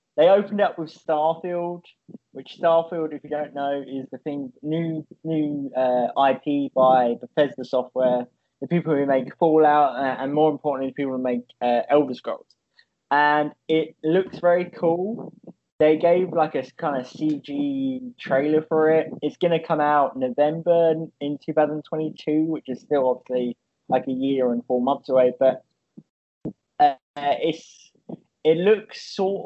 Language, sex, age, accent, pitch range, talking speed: English, male, 10-29, British, 135-165 Hz, 160 wpm